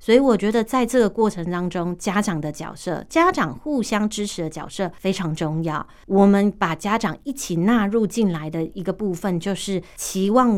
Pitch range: 175-220 Hz